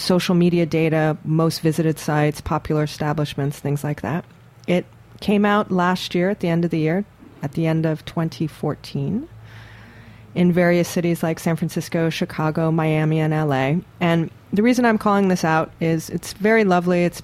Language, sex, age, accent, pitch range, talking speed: English, female, 40-59, American, 155-185 Hz, 170 wpm